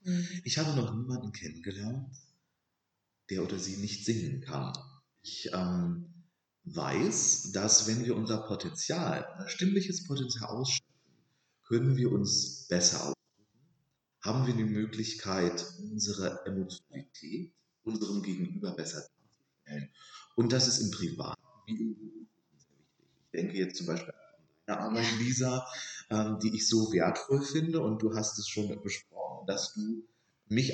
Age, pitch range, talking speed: 40-59, 105-150 Hz, 135 wpm